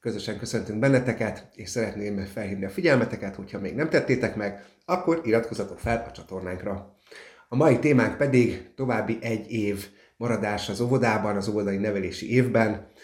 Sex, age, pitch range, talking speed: male, 30-49, 100-120 Hz, 145 wpm